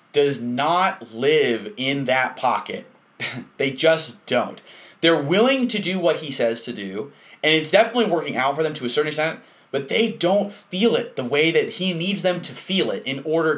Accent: American